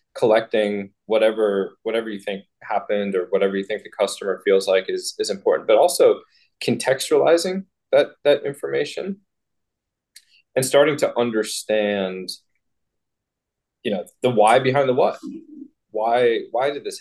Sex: male